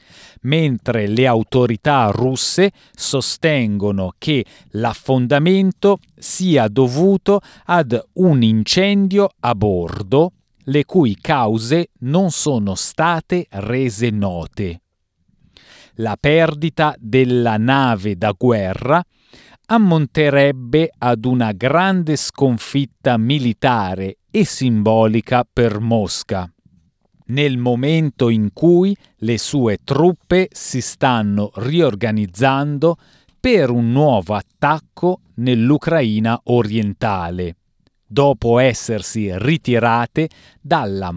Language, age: Italian, 40-59